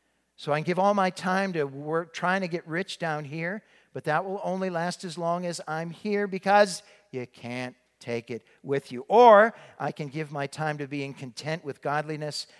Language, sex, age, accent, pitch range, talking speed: English, male, 50-69, American, 125-175 Hz, 205 wpm